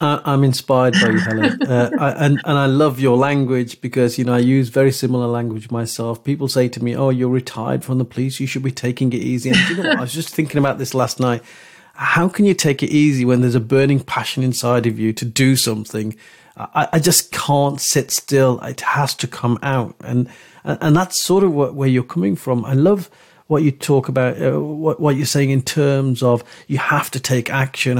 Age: 40-59